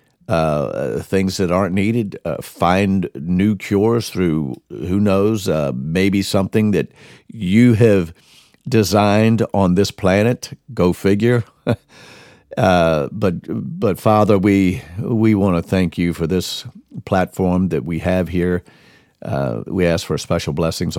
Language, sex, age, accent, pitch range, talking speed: English, male, 50-69, American, 85-110 Hz, 135 wpm